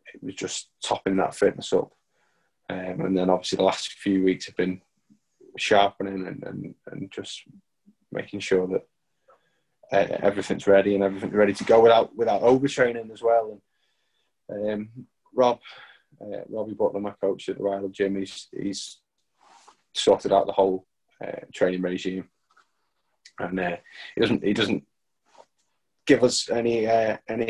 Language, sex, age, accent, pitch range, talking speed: English, male, 20-39, British, 95-120 Hz, 150 wpm